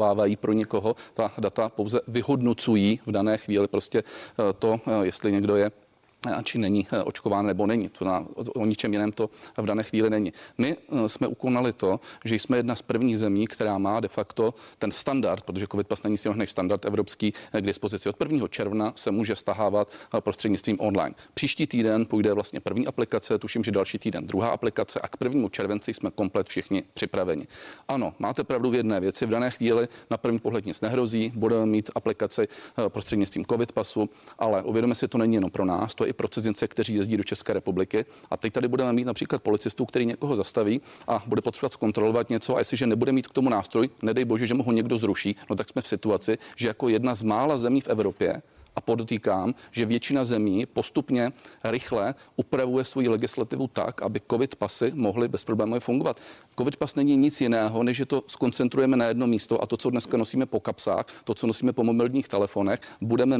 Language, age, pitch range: Czech, 40-59, 105-125 Hz